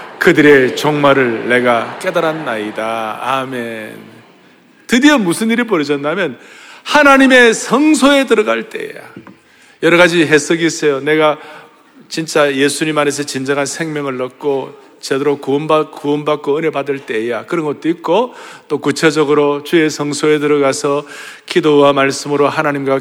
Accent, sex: native, male